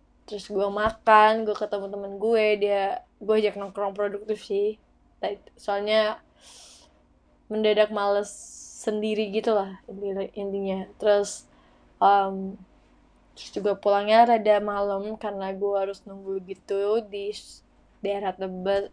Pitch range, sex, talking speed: 195-210 Hz, female, 110 wpm